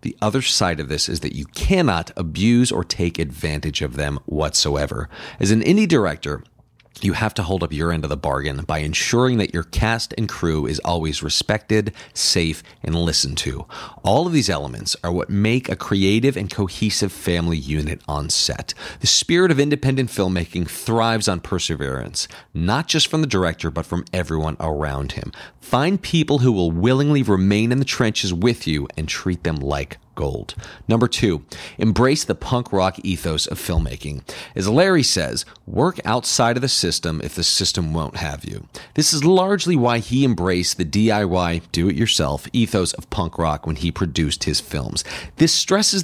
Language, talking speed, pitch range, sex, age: English, 175 wpm, 85-120 Hz, male, 40-59